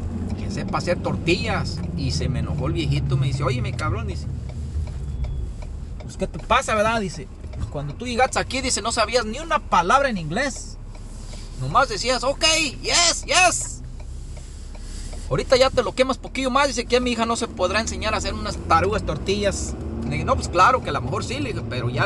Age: 40-59